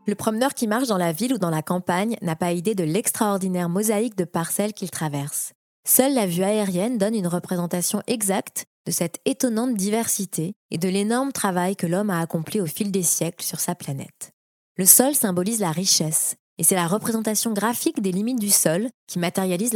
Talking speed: 195 wpm